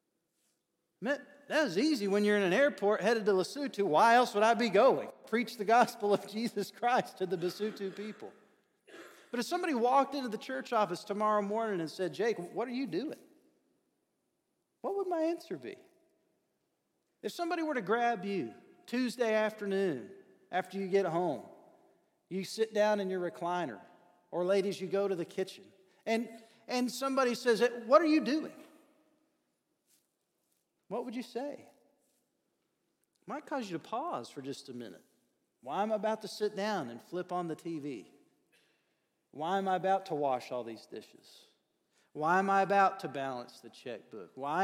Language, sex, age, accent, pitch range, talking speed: English, male, 40-59, American, 180-245 Hz, 170 wpm